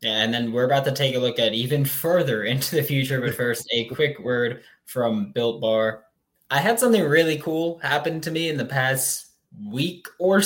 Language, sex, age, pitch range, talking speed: English, male, 10-29, 115-150 Hz, 200 wpm